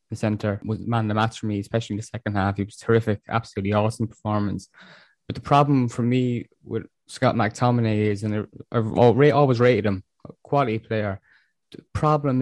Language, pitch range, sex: English, 105-120 Hz, male